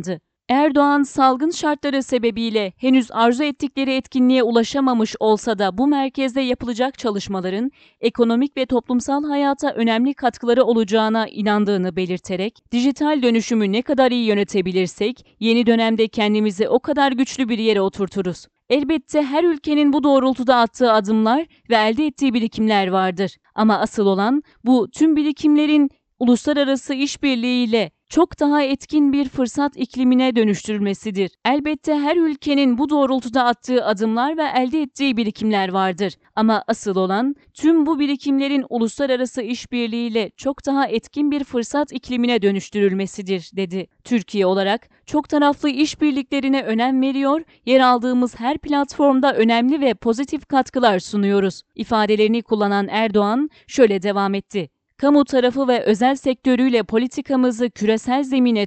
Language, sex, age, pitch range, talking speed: Turkish, female, 40-59, 215-275 Hz, 125 wpm